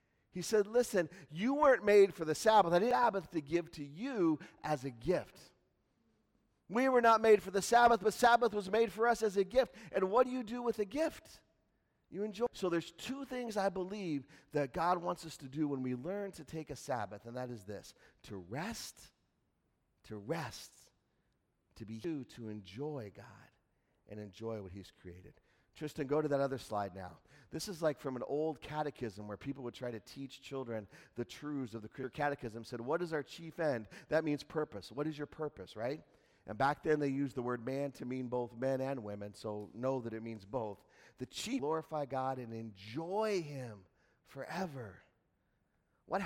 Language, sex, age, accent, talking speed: English, male, 40-59, American, 200 wpm